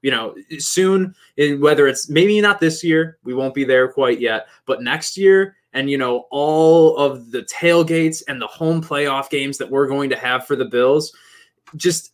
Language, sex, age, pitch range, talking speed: English, male, 20-39, 140-200 Hz, 195 wpm